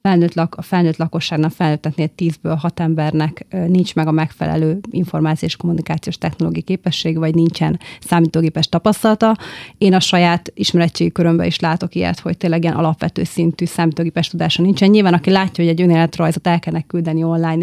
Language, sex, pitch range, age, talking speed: Hungarian, female, 160-185 Hz, 30-49, 150 wpm